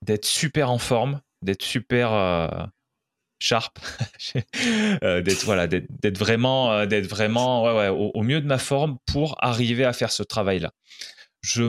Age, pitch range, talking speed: 20-39, 100-130 Hz, 160 wpm